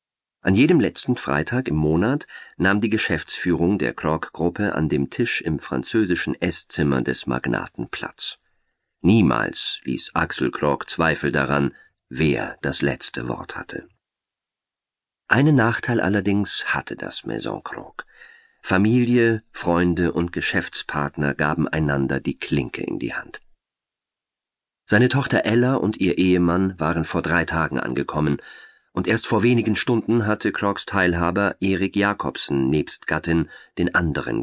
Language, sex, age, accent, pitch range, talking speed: German, male, 40-59, German, 75-105 Hz, 130 wpm